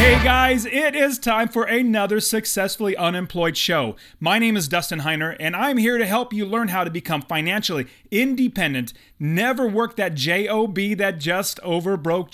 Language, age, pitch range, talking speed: English, 30-49, 165-220 Hz, 165 wpm